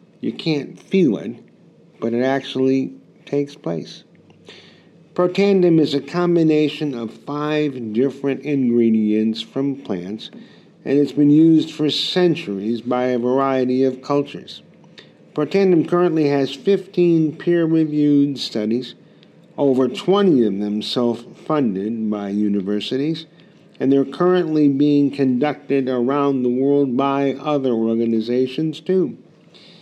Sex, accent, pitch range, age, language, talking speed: male, American, 115-160 Hz, 50-69, English, 110 wpm